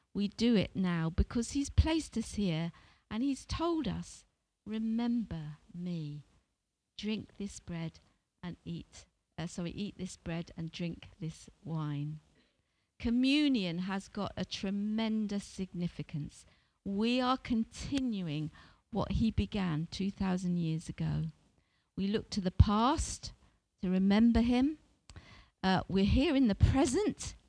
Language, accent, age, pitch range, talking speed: English, British, 50-69, 170-230 Hz, 125 wpm